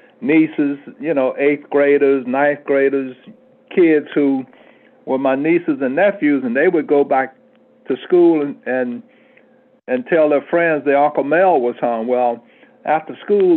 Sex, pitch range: male, 130-170 Hz